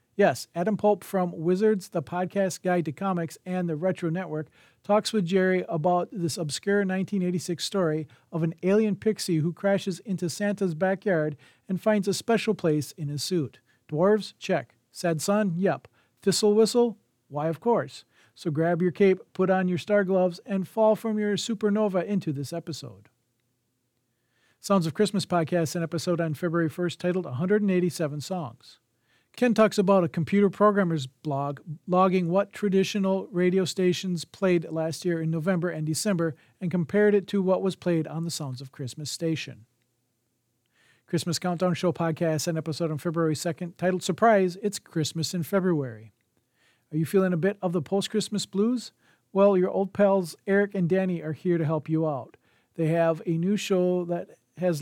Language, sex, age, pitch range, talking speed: English, male, 40-59, 160-195 Hz, 170 wpm